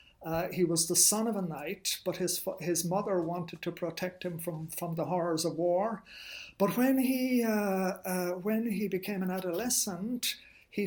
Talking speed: 190 wpm